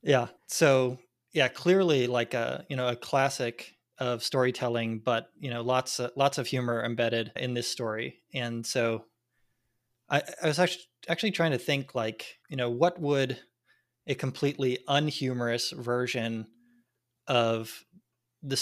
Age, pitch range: 20-39, 120-135 Hz